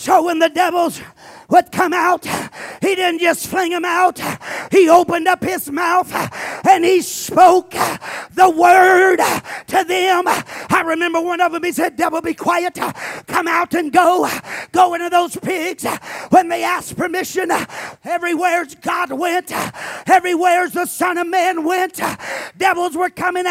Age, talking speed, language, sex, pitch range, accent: 40-59, 150 wpm, English, male, 340-370 Hz, American